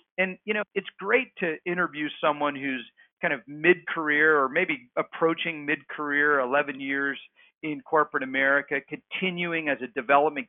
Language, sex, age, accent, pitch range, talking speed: English, male, 40-59, American, 135-175 Hz, 155 wpm